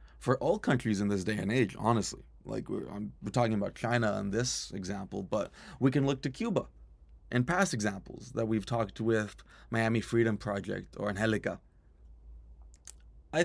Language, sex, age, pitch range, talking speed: English, male, 20-39, 95-120 Hz, 170 wpm